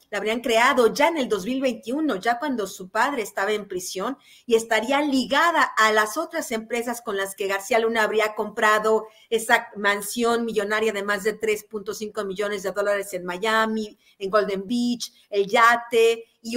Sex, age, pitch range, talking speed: female, 40-59, 215-260 Hz, 165 wpm